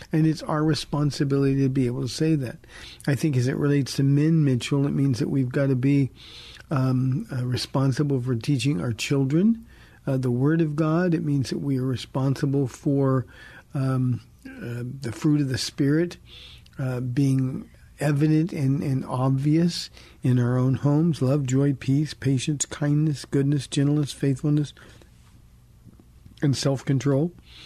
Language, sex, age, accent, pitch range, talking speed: English, male, 50-69, American, 130-150 Hz, 155 wpm